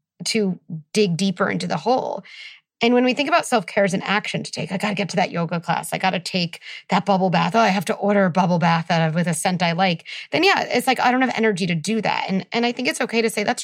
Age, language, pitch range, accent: 30-49, English, 185-235 Hz, American